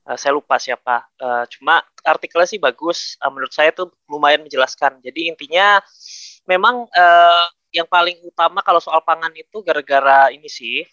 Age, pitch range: 20-39, 125-165 Hz